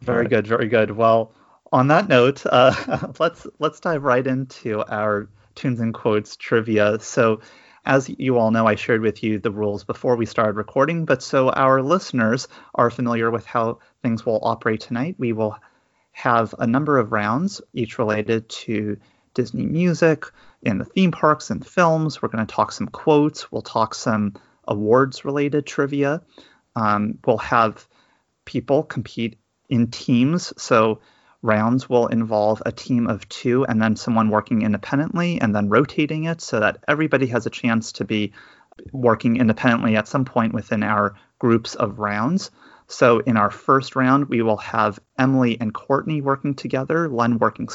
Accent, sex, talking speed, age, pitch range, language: American, male, 165 wpm, 30-49, 110-135 Hz, English